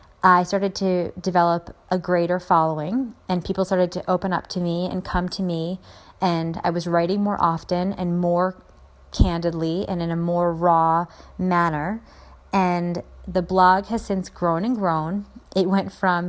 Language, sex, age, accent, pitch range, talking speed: English, female, 30-49, American, 170-185 Hz, 165 wpm